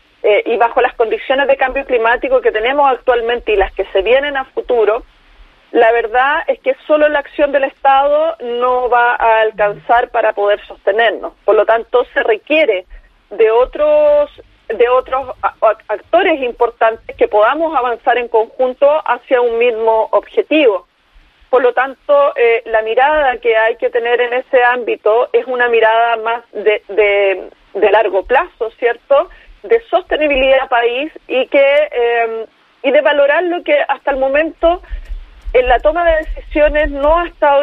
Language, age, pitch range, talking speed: Spanish, 40-59, 235-295 Hz, 155 wpm